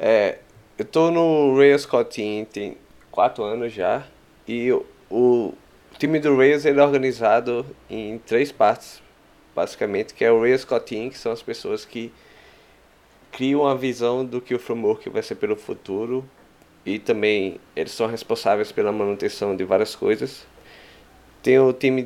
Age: 20-39